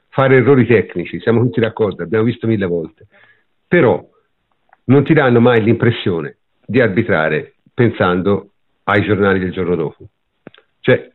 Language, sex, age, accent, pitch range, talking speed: Italian, male, 50-69, native, 115-175 Hz, 135 wpm